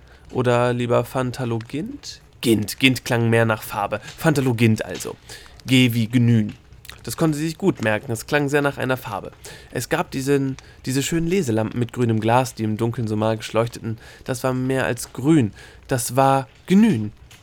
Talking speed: 165 wpm